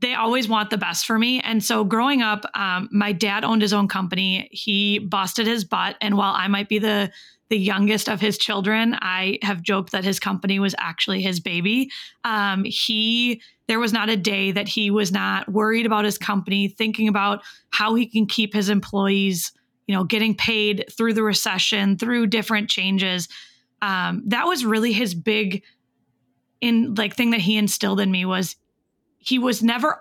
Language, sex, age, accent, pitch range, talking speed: English, female, 20-39, American, 200-225 Hz, 190 wpm